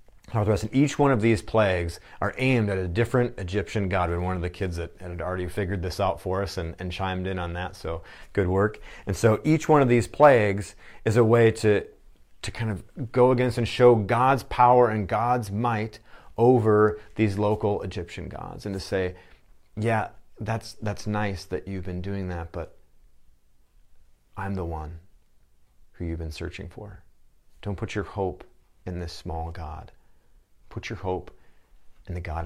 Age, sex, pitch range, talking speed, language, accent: 30-49, male, 85-105 Hz, 180 wpm, English, American